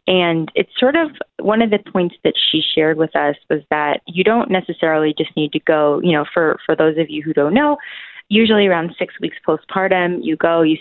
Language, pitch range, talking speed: English, 155-200 Hz, 220 wpm